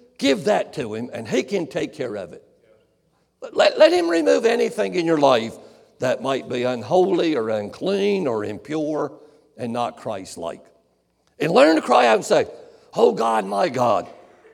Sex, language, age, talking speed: male, English, 60-79, 170 wpm